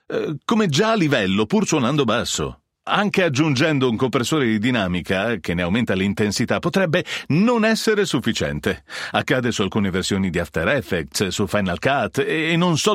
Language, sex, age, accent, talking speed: Italian, male, 40-59, native, 160 wpm